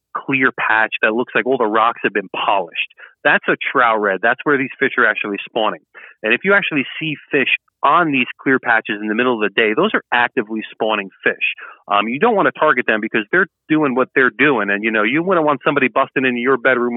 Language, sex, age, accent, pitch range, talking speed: English, male, 30-49, American, 110-145 Hz, 235 wpm